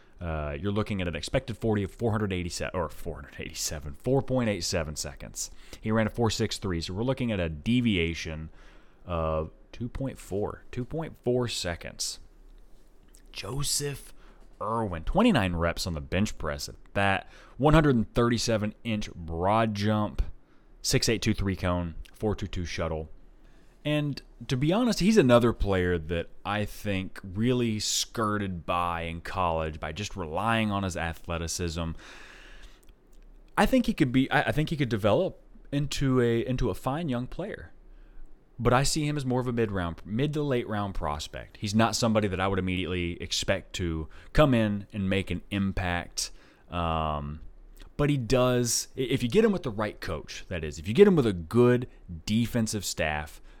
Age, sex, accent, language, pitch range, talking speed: 30-49, male, American, English, 85-120 Hz, 150 wpm